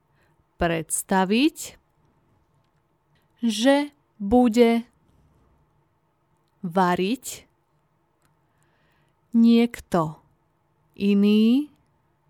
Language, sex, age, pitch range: Slovak, female, 20-39, 170-235 Hz